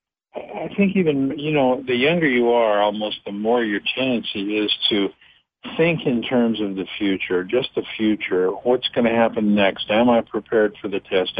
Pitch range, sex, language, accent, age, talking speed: 105-130 Hz, male, English, American, 60-79, 190 wpm